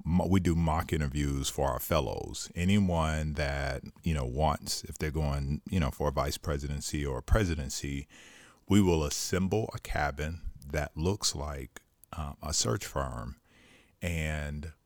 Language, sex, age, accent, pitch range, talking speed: English, male, 40-59, American, 75-95 Hz, 150 wpm